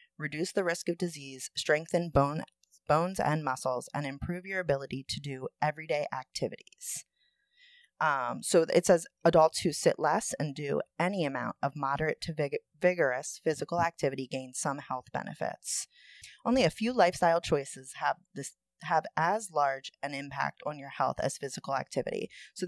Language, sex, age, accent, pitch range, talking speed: English, female, 30-49, American, 135-180 Hz, 150 wpm